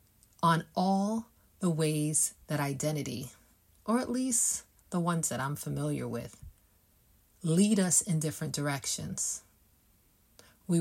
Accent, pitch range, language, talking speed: American, 115-175 Hz, English, 115 wpm